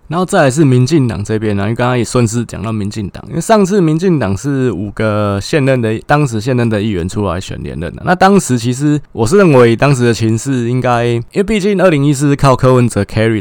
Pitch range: 105-140 Hz